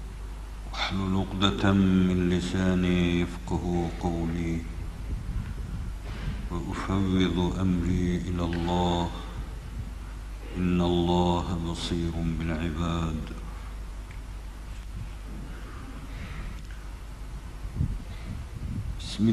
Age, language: 60-79, Turkish